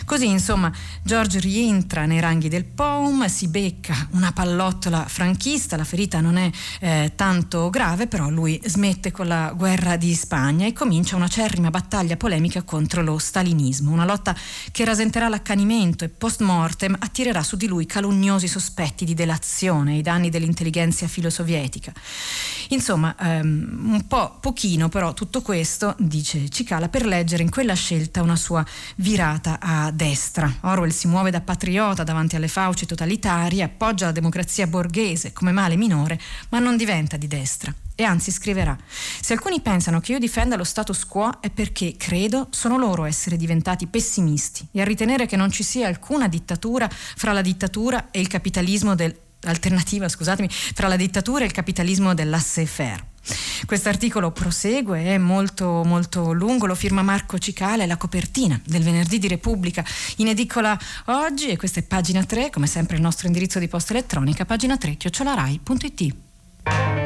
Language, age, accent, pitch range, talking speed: Italian, 40-59, native, 165-205 Hz, 155 wpm